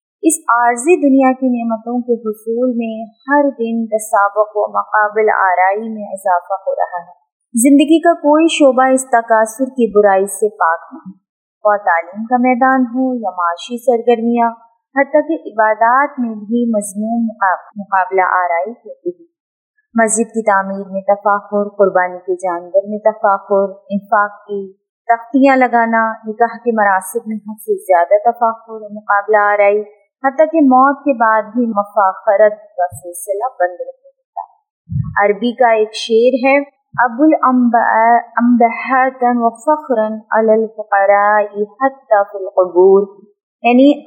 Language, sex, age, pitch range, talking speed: Urdu, female, 20-39, 200-255 Hz, 125 wpm